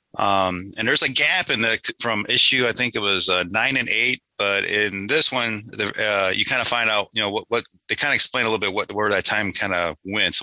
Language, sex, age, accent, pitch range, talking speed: English, male, 30-49, American, 100-130 Hz, 270 wpm